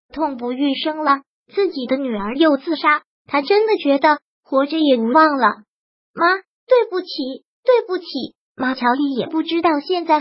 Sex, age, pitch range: male, 20-39, 270-325 Hz